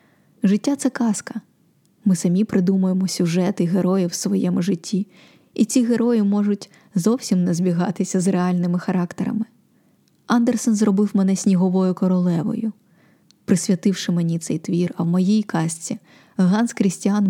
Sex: female